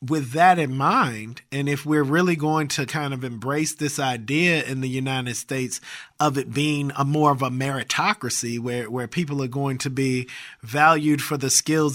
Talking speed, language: 190 wpm, English